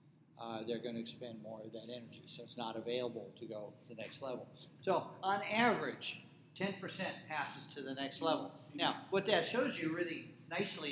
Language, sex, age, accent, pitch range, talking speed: English, male, 50-69, American, 135-170 Hz, 190 wpm